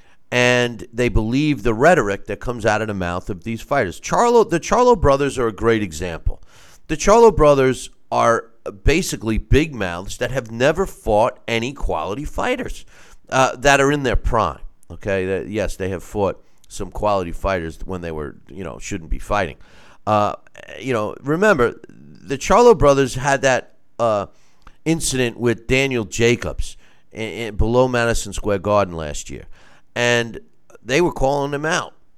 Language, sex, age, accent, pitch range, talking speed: English, male, 40-59, American, 100-140 Hz, 160 wpm